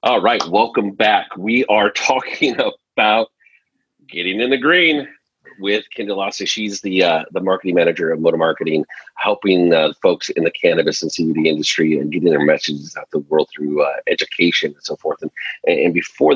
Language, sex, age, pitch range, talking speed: English, male, 40-59, 80-115 Hz, 180 wpm